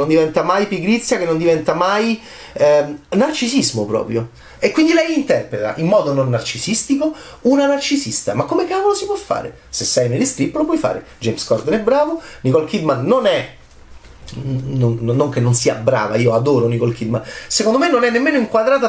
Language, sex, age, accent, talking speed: Italian, male, 30-49, native, 180 wpm